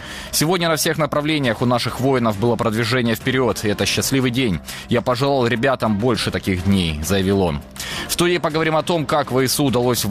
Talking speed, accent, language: 180 wpm, native, Ukrainian